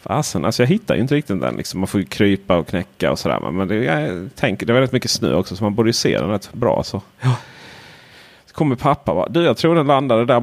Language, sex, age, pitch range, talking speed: Swedish, male, 30-49, 100-135 Hz, 255 wpm